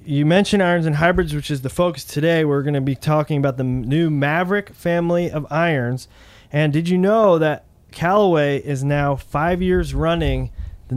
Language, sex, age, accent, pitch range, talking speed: English, male, 20-39, American, 130-165 Hz, 185 wpm